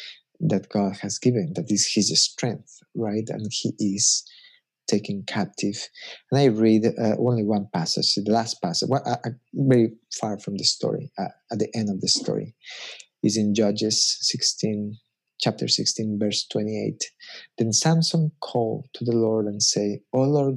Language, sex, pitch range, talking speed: English, male, 110-150 Hz, 160 wpm